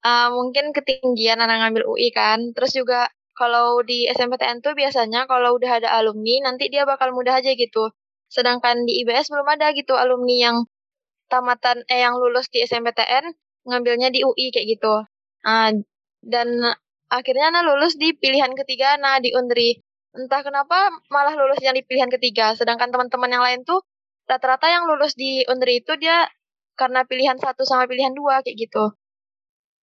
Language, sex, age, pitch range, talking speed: Indonesian, female, 20-39, 240-275 Hz, 165 wpm